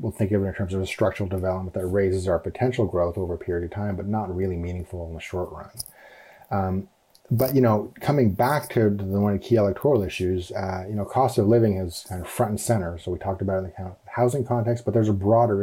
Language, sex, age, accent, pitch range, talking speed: English, male, 30-49, American, 95-115 Hz, 255 wpm